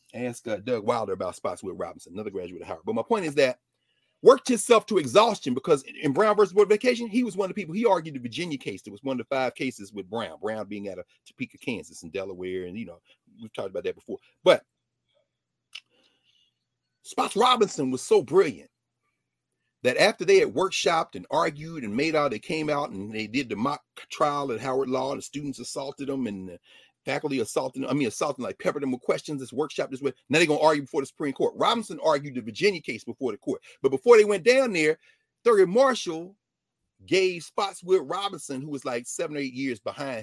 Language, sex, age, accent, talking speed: English, male, 40-59, American, 220 wpm